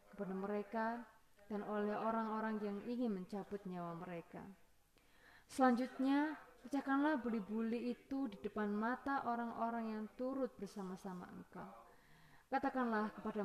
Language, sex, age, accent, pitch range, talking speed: Indonesian, female, 20-39, native, 195-225 Hz, 105 wpm